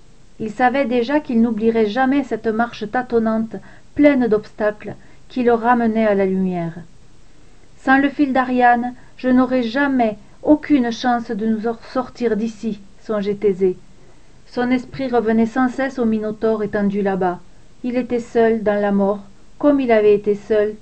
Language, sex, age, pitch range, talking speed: French, female, 40-59, 210-250 Hz, 155 wpm